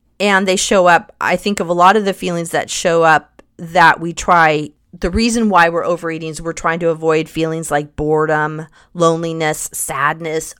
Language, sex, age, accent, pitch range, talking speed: English, female, 30-49, American, 160-200 Hz, 185 wpm